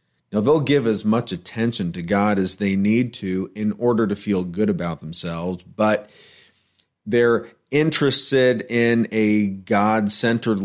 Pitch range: 100-120 Hz